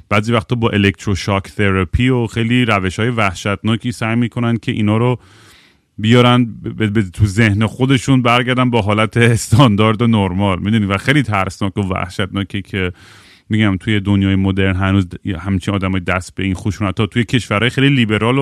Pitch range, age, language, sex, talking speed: 100-125 Hz, 30-49, Persian, male, 170 wpm